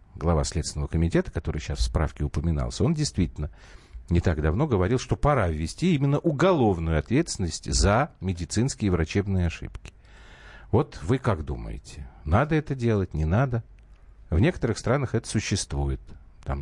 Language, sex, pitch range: Russian, male, 75-105 Hz